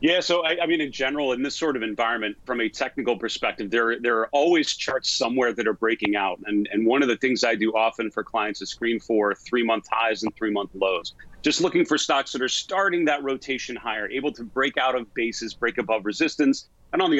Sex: male